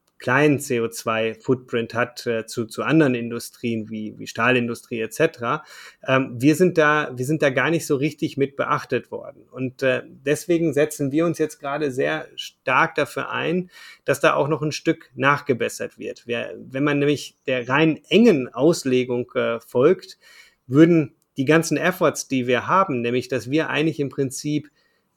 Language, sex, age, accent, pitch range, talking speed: German, male, 30-49, German, 125-155 Hz, 165 wpm